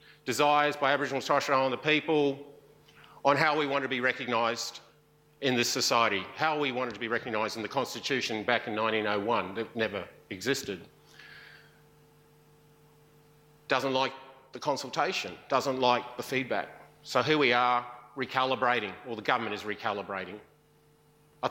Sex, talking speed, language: male, 140 wpm, English